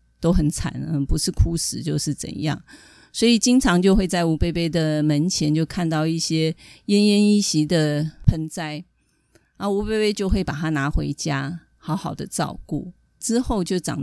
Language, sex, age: Chinese, female, 30-49